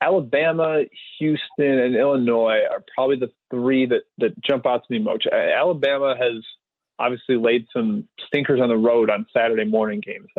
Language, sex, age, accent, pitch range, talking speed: English, male, 30-49, American, 115-150 Hz, 160 wpm